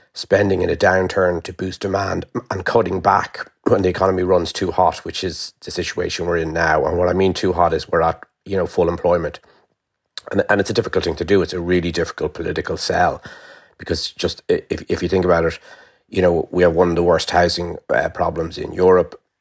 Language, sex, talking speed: English, male, 220 wpm